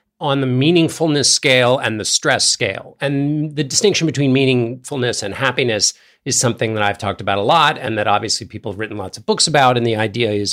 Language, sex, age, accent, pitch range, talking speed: English, male, 50-69, American, 105-140 Hz, 210 wpm